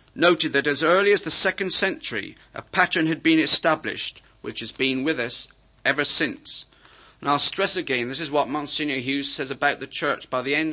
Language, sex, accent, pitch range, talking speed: English, male, British, 135-165 Hz, 200 wpm